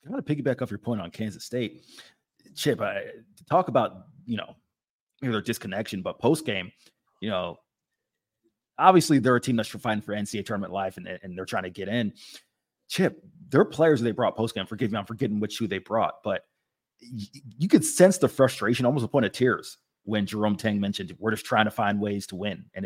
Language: English